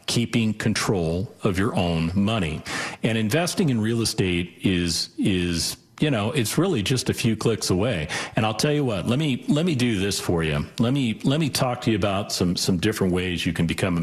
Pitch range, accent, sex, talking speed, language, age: 85-115 Hz, American, male, 220 wpm, English, 50-69